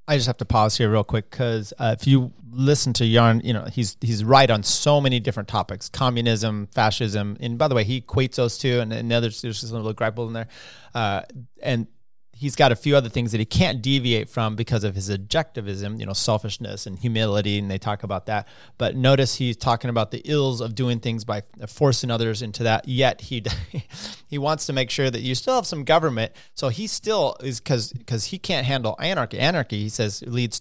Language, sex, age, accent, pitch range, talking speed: English, male, 30-49, American, 110-135 Hz, 225 wpm